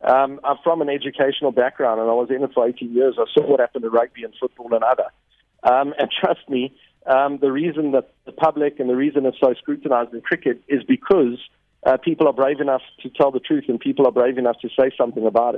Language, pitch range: English, 125-145 Hz